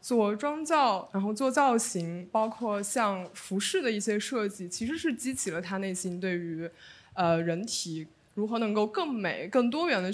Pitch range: 180-230 Hz